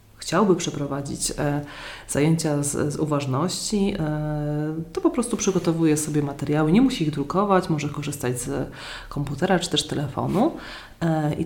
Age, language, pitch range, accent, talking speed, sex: 30-49, Polish, 150-190 Hz, native, 125 wpm, female